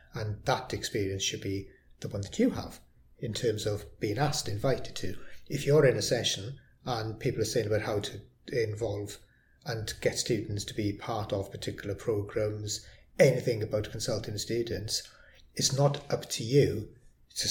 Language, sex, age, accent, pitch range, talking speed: English, male, 30-49, British, 100-120 Hz, 170 wpm